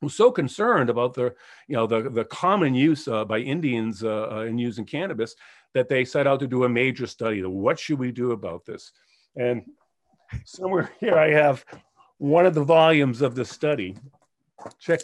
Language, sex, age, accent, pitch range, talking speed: English, male, 50-69, American, 125-165 Hz, 185 wpm